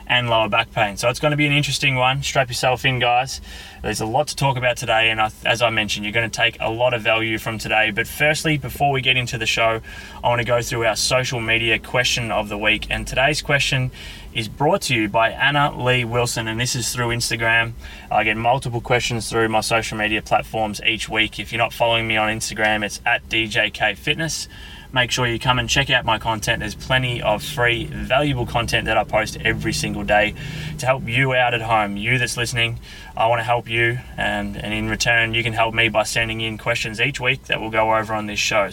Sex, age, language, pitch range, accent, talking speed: male, 20-39, English, 110-125 Hz, Australian, 235 wpm